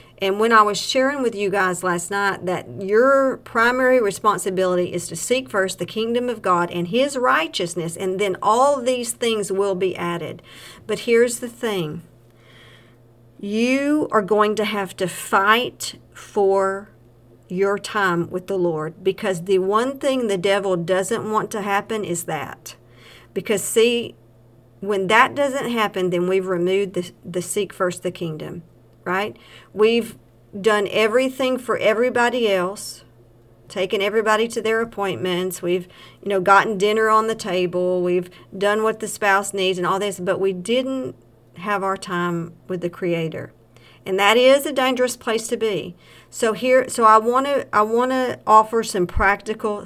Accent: American